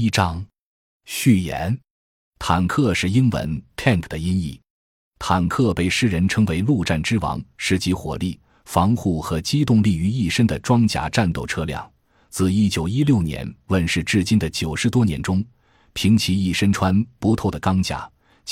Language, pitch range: Chinese, 80-110 Hz